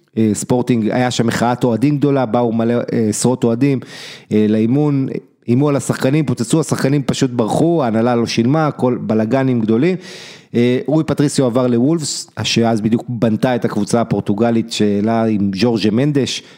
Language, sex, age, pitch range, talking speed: Hebrew, male, 30-49, 115-140 Hz, 140 wpm